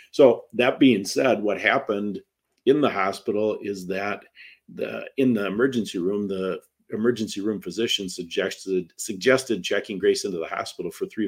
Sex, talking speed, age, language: male, 155 wpm, 50-69, English